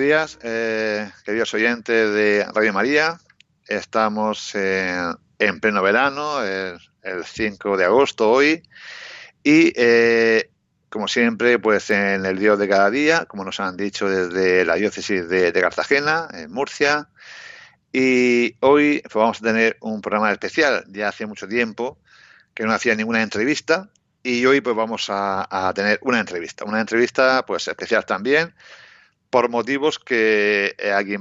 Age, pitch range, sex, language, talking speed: 60-79, 100-120 Hz, male, Spanish, 150 wpm